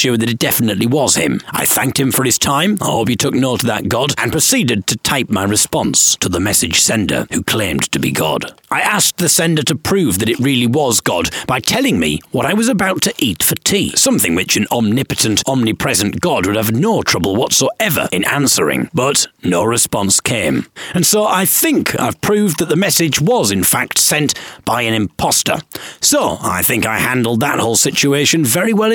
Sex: male